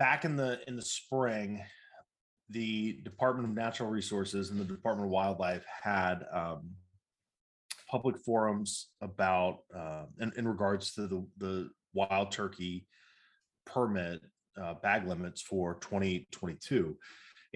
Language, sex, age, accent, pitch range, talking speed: English, male, 30-49, American, 95-115 Hz, 125 wpm